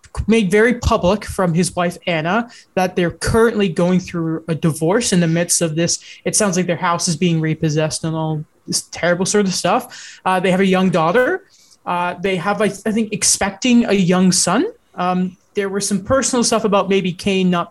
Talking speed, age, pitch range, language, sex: 200 wpm, 20-39, 175-215 Hz, English, male